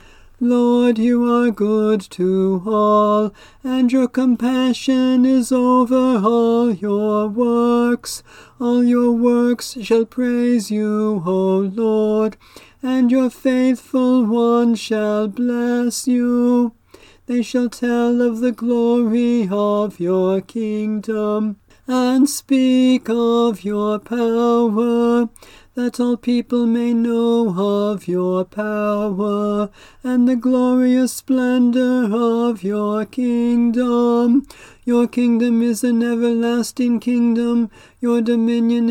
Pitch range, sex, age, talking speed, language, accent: 215-250 Hz, male, 40-59, 100 wpm, English, American